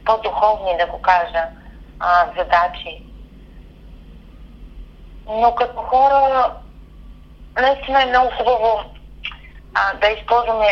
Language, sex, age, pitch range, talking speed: Bulgarian, female, 30-49, 175-220 Hz, 90 wpm